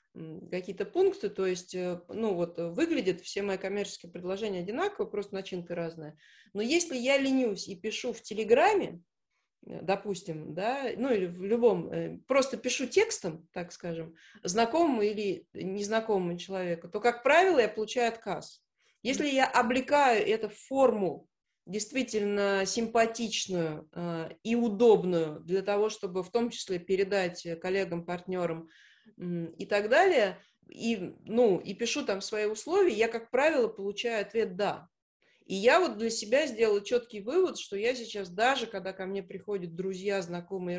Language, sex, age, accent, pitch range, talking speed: Russian, female, 30-49, native, 185-235 Hz, 140 wpm